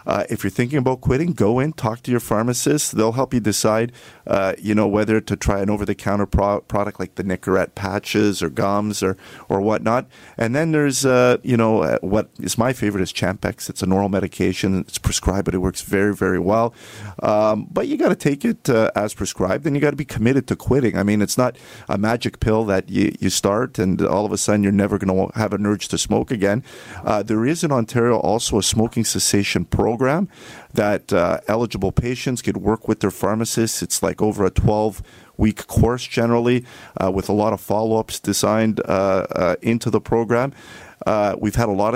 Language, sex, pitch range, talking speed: English, male, 100-120 Hz, 210 wpm